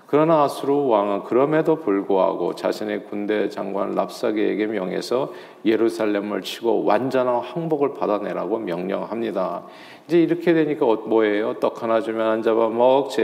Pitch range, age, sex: 105-145 Hz, 40-59, male